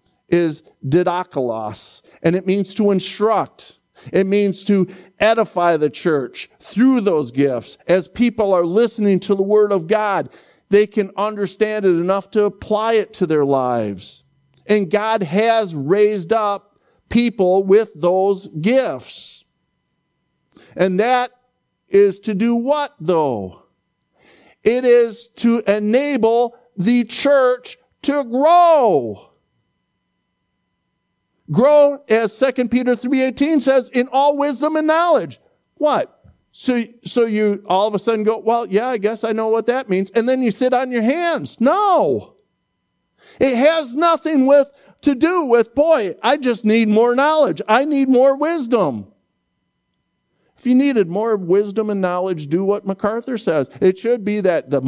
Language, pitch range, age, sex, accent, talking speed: English, 190-250 Hz, 50-69, male, American, 140 wpm